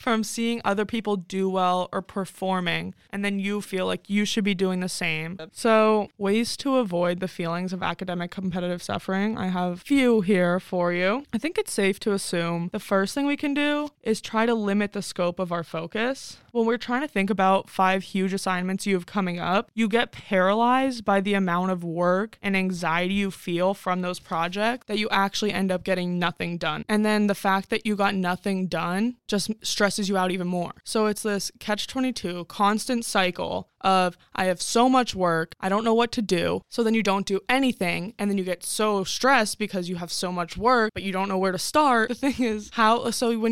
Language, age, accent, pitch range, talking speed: English, 20-39, American, 185-235 Hz, 215 wpm